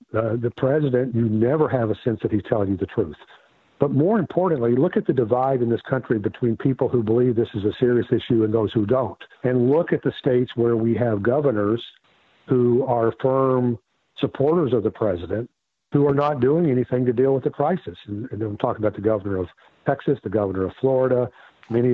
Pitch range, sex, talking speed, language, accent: 110-130 Hz, male, 210 wpm, English, American